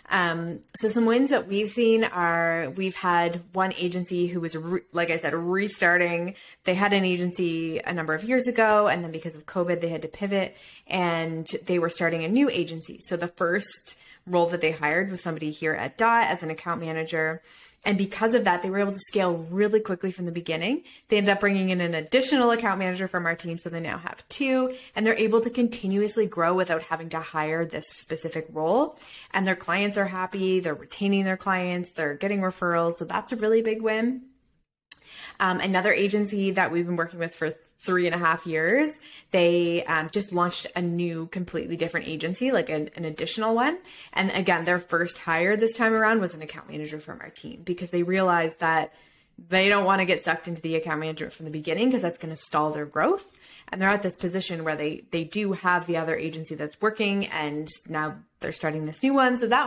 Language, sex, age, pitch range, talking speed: English, female, 20-39, 165-205 Hz, 215 wpm